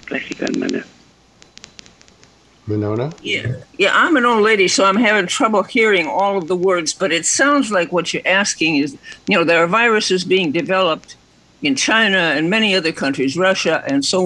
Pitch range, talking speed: 150-195 Hz, 170 wpm